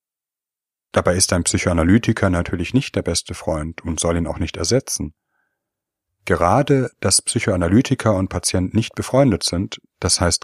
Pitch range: 90-115 Hz